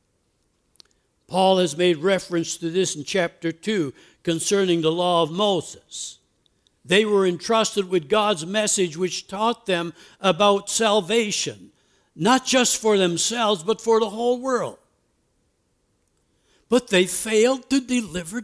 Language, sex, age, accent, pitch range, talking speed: English, male, 60-79, American, 185-245 Hz, 125 wpm